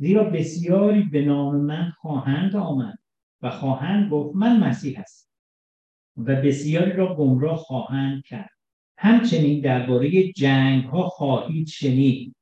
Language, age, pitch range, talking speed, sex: Persian, 50-69, 135-195 Hz, 115 wpm, male